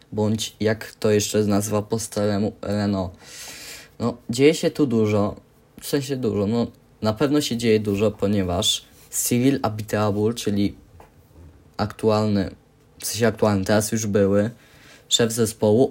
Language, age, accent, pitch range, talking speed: Polish, 20-39, native, 100-120 Hz, 140 wpm